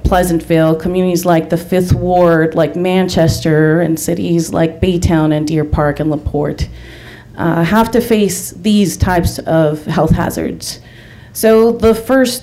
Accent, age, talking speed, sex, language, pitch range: American, 30-49, 140 wpm, female, English, 160-200 Hz